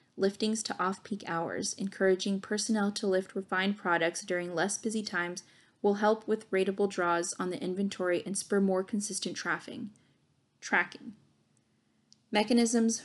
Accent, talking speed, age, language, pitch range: American, 135 wpm, 20-39, English, 180-205 Hz